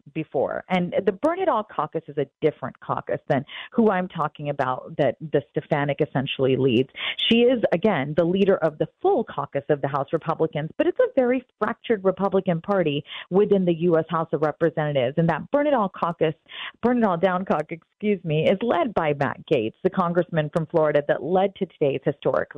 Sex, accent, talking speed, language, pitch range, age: female, American, 195 wpm, English, 165-235 Hz, 40-59